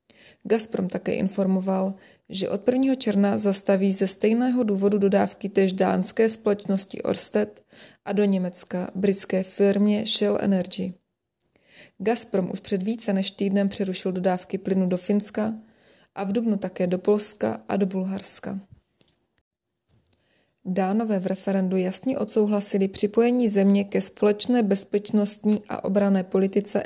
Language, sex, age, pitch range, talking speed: Czech, female, 20-39, 195-210 Hz, 125 wpm